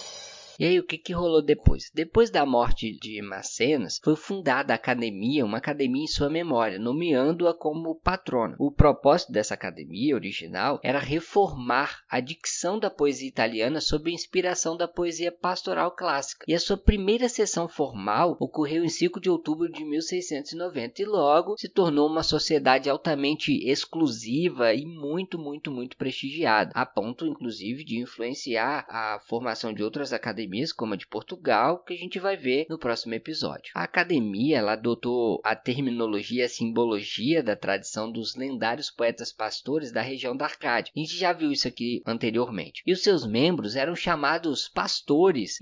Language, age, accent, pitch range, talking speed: Portuguese, 20-39, Brazilian, 120-175 Hz, 160 wpm